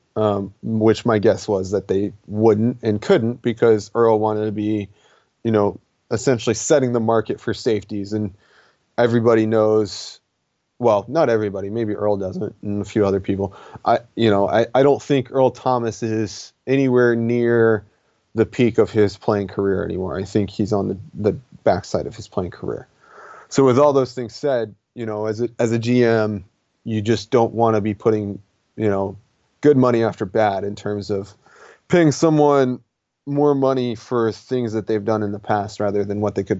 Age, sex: 30-49, male